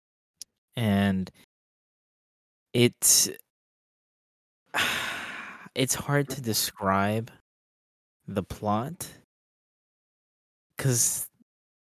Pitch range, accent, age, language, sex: 95-120 Hz, American, 20-39, English, male